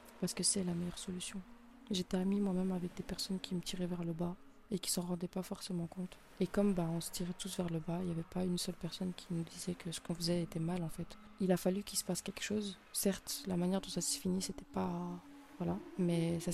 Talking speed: 270 wpm